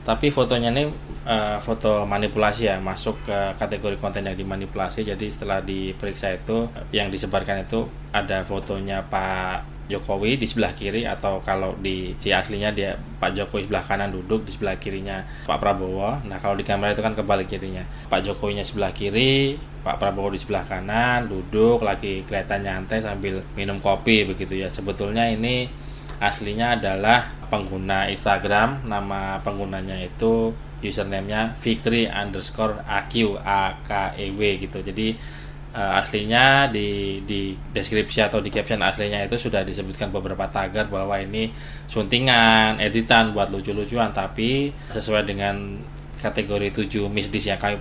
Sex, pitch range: male, 100-110 Hz